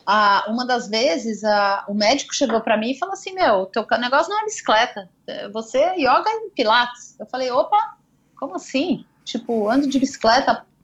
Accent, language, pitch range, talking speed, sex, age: Brazilian, Portuguese, 205-280 Hz, 185 wpm, female, 30-49